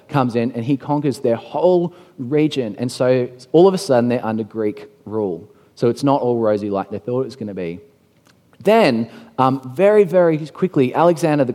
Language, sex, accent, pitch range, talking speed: English, male, Australian, 125-170 Hz, 195 wpm